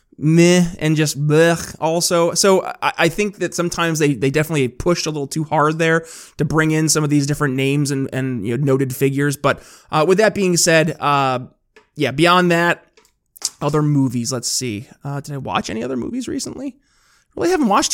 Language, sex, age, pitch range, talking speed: English, male, 20-39, 140-170 Hz, 195 wpm